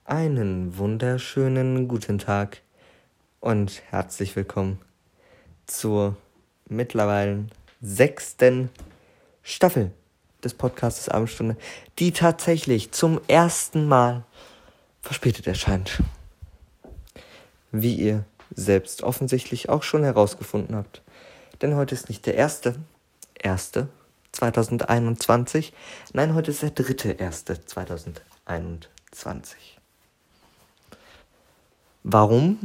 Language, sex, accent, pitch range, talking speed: German, male, German, 100-135 Hz, 80 wpm